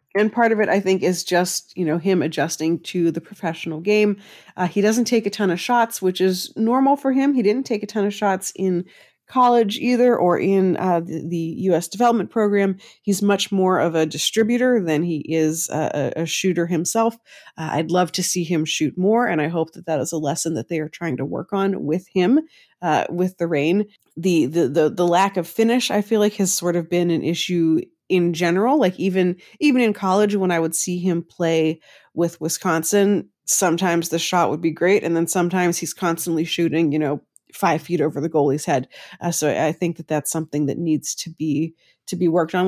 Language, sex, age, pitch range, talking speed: English, female, 30-49, 165-205 Hz, 215 wpm